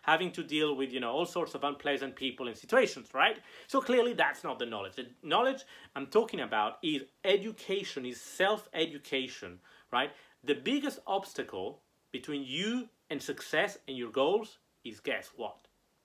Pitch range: 125-180 Hz